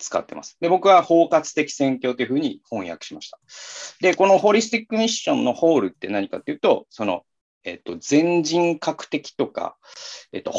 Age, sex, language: 40-59, male, Japanese